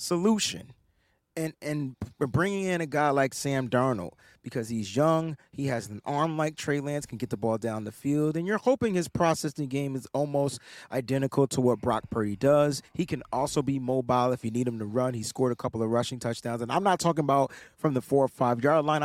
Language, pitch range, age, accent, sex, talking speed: English, 125-170 Hz, 30-49, American, male, 225 wpm